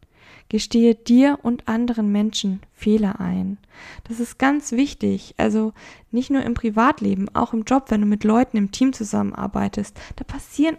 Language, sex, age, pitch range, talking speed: German, female, 10-29, 205-245 Hz, 155 wpm